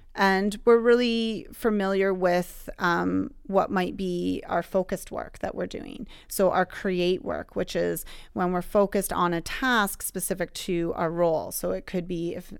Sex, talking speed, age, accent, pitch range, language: female, 170 wpm, 30-49, American, 180-215 Hz, English